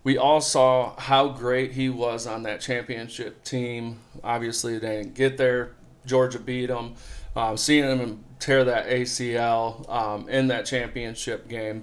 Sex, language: male, English